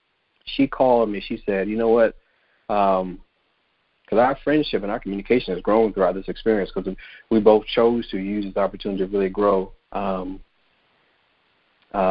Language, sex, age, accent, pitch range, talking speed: English, male, 30-49, American, 95-110 Hz, 165 wpm